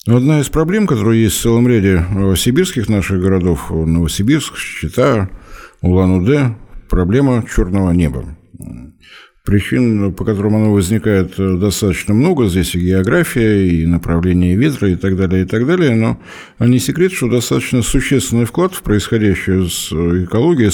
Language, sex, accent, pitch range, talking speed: Russian, male, native, 95-115 Hz, 135 wpm